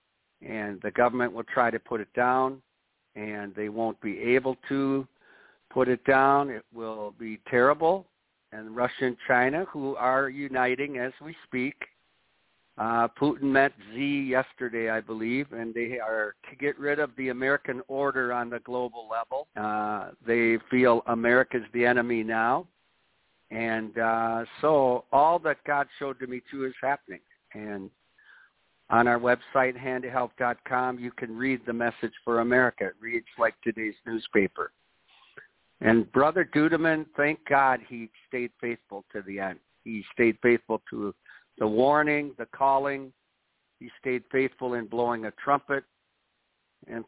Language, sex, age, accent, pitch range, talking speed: English, male, 60-79, American, 115-135 Hz, 150 wpm